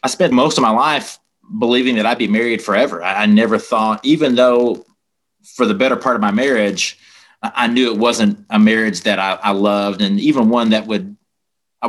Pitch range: 105-175 Hz